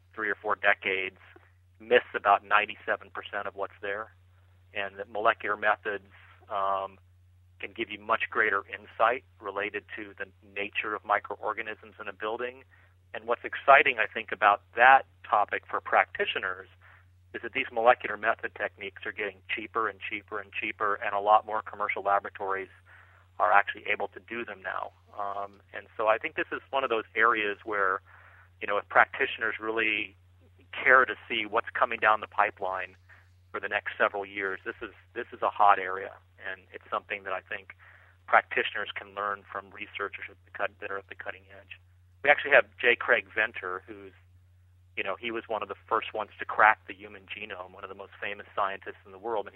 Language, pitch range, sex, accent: English, 90-105 Hz, male, American